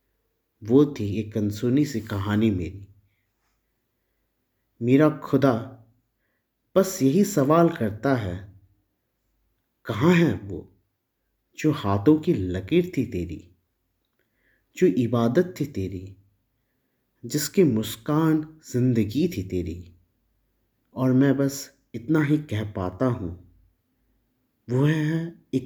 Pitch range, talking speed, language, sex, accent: 100-130 Hz, 100 wpm, Hindi, male, native